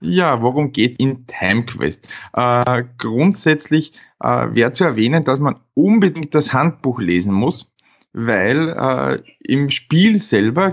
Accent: Austrian